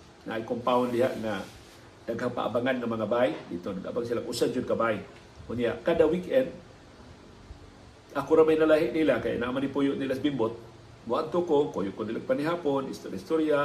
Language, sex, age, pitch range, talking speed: Filipino, male, 50-69, 135-215 Hz, 170 wpm